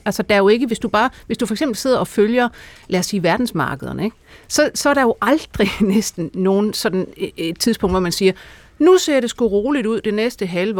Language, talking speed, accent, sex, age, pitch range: Danish, 240 wpm, native, female, 60-79, 180-220 Hz